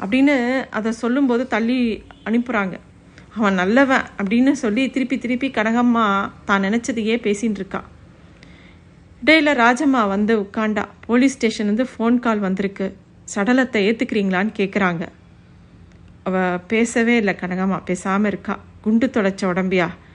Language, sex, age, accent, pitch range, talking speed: Tamil, female, 50-69, native, 195-240 Hz, 115 wpm